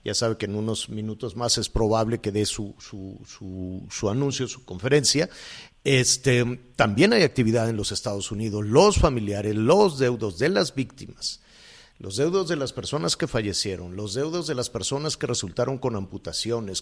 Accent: Mexican